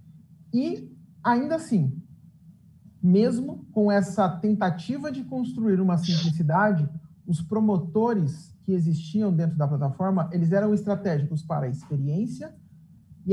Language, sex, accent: English, male, Brazilian